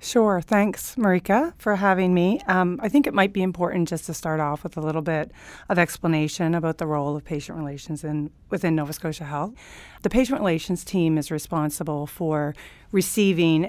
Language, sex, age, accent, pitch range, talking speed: English, female, 40-59, American, 150-185 Hz, 185 wpm